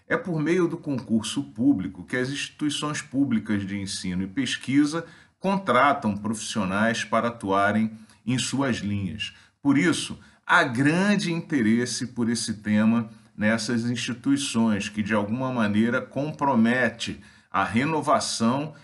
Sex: male